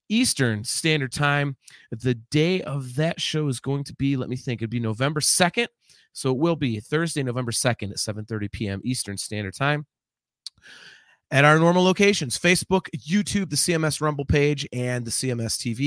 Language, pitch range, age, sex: English, 115-155 Hz, 30-49, male